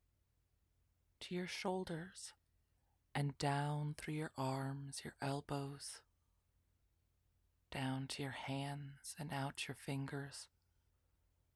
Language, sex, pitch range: English, female, 90-140 Hz